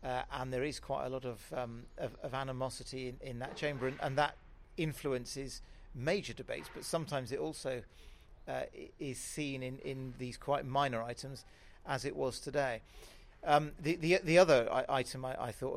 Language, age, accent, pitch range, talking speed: English, 40-59, British, 120-145 Hz, 185 wpm